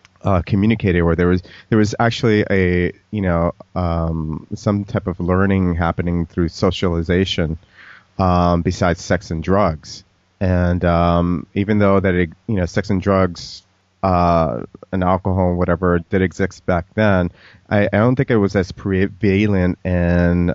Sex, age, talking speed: male, 30-49, 150 wpm